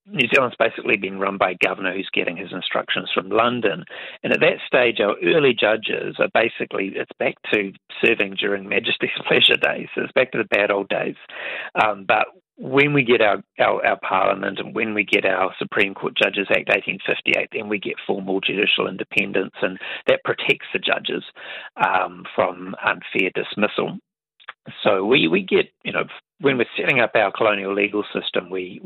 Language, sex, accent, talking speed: English, male, Australian, 180 wpm